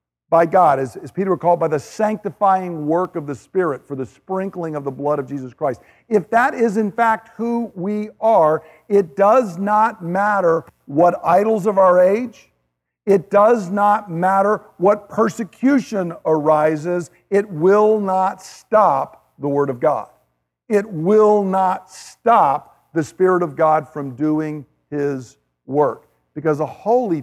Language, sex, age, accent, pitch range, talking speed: English, male, 50-69, American, 145-200 Hz, 150 wpm